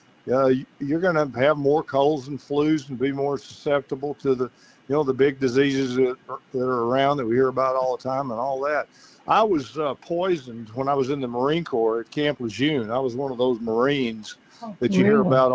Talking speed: 230 wpm